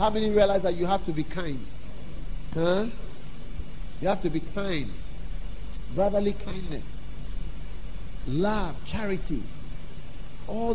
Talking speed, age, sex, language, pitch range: 110 wpm, 50-69, male, English, 155-205 Hz